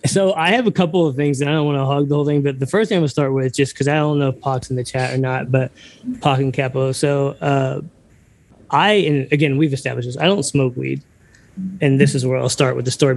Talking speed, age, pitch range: 285 wpm, 20-39, 125-145 Hz